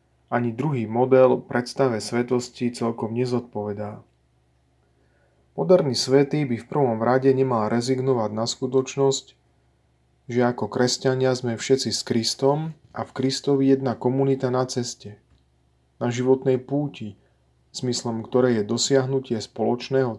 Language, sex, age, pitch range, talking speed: Slovak, male, 30-49, 105-135 Hz, 115 wpm